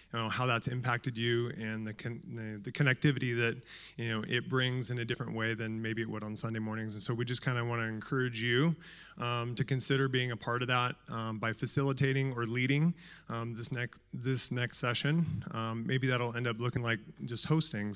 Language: English